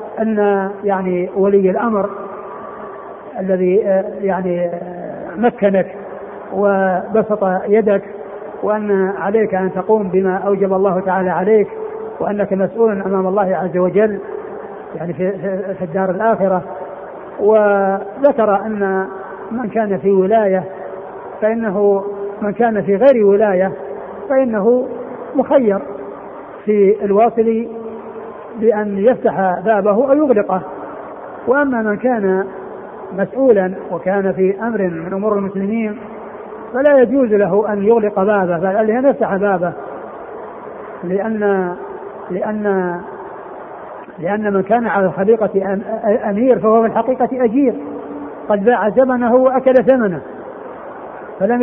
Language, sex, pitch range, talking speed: Arabic, male, 195-225 Hz, 100 wpm